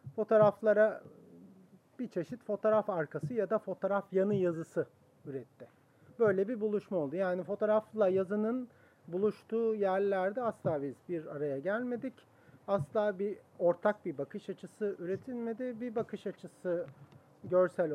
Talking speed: 120 wpm